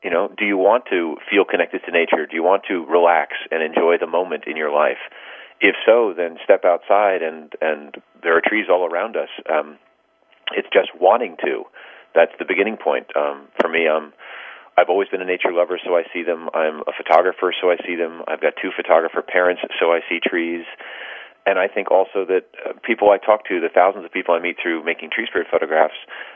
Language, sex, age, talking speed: English, male, 40-59, 215 wpm